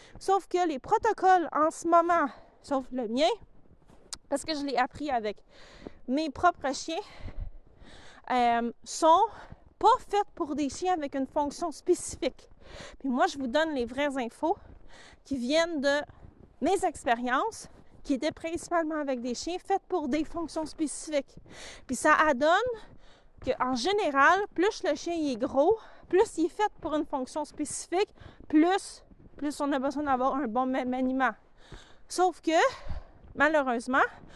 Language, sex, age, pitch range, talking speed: French, female, 30-49, 275-355 Hz, 150 wpm